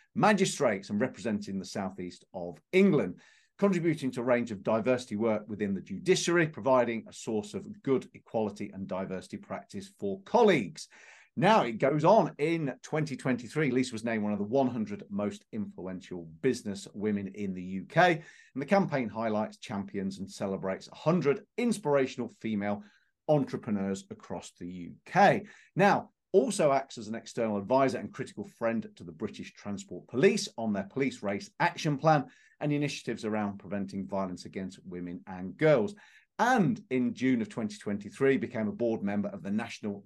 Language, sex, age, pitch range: English, male, 40-59, 100-160 Hz